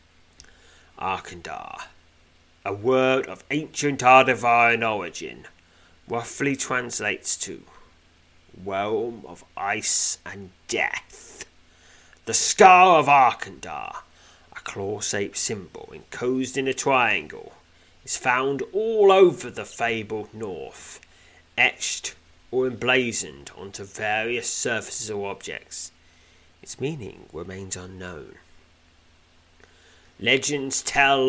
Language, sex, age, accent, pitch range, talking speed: English, male, 30-49, British, 85-120 Hz, 90 wpm